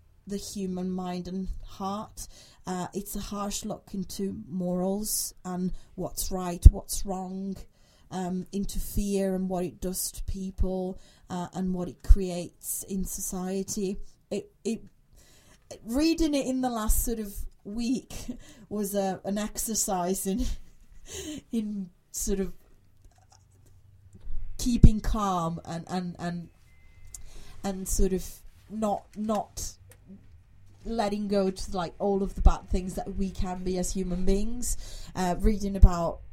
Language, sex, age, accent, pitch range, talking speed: English, female, 30-49, British, 175-200 Hz, 130 wpm